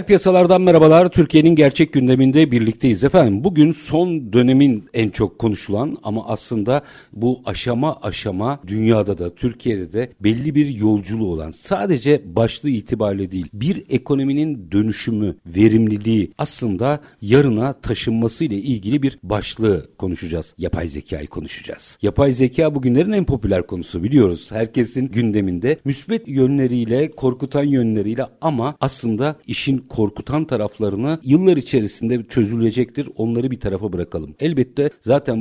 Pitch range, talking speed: 100-140 Hz, 120 wpm